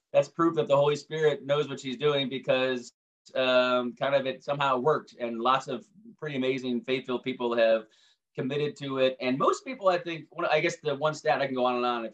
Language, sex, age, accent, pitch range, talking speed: English, male, 30-49, American, 115-145 Hz, 220 wpm